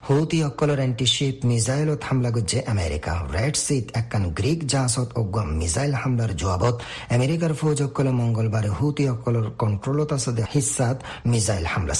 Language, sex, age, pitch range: Bengali, male, 50-69, 105-135 Hz